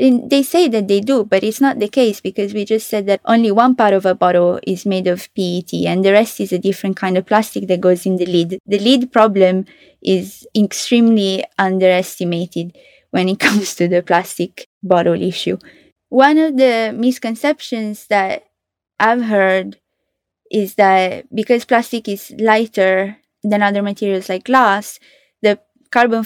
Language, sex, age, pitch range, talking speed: English, female, 20-39, 190-230 Hz, 165 wpm